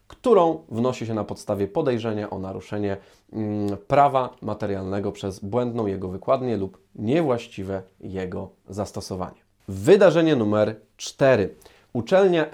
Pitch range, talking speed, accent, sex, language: 100-130 Hz, 105 wpm, native, male, Polish